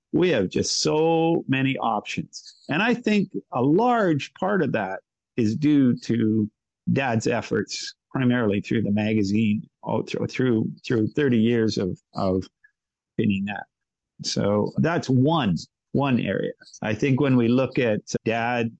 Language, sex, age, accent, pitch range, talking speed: English, male, 50-69, American, 115-140 Hz, 140 wpm